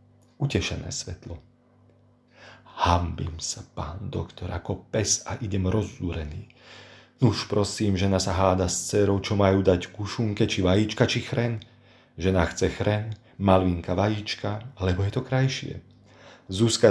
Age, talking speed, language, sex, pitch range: 40-59, 135 wpm, Slovak, male, 95-120 Hz